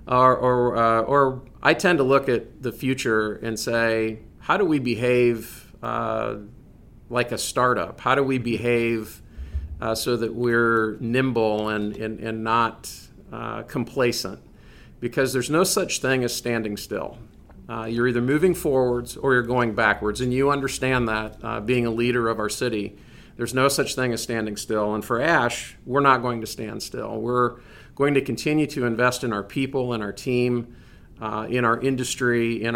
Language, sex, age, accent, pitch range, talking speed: English, male, 50-69, American, 110-130 Hz, 180 wpm